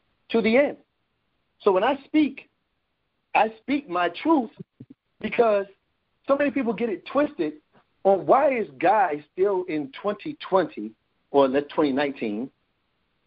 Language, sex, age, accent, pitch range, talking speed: English, male, 50-69, American, 160-240 Hz, 130 wpm